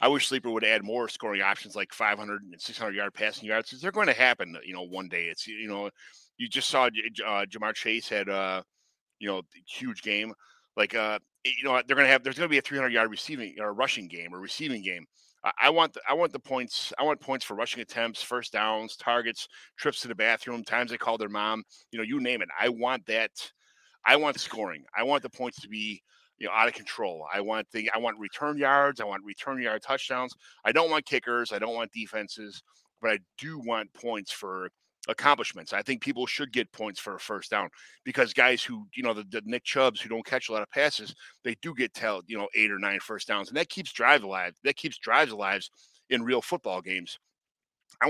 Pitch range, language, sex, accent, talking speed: 105-135 Hz, English, male, American, 230 wpm